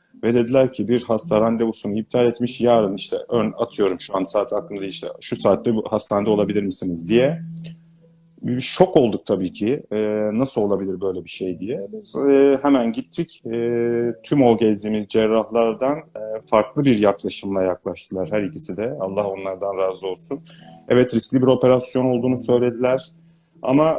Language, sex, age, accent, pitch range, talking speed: Turkish, male, 30-49, native, 105-130 Hz, 150 wpm